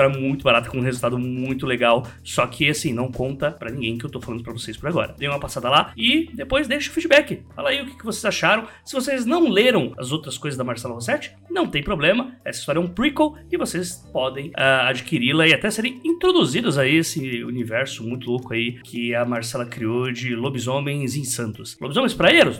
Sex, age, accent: male, 20-39, Brazilian